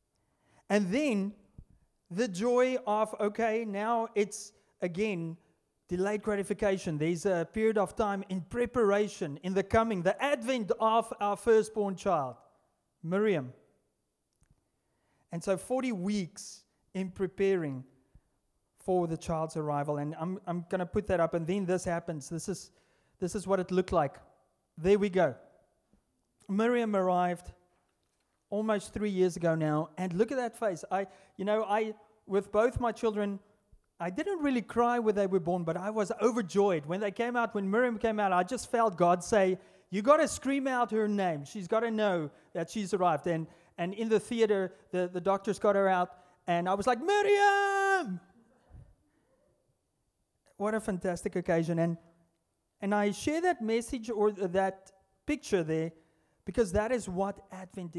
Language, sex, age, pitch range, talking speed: English, male, 30-49, 180-220 Hz, 160 wpm